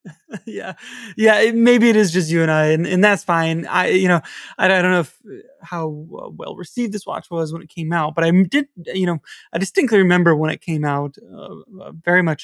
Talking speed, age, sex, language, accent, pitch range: 235 wpm, 20-39, male, English, American, 165-200 Hz